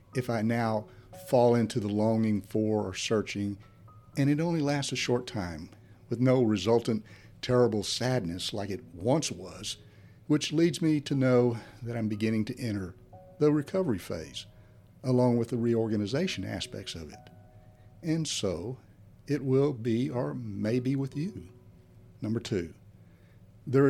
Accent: American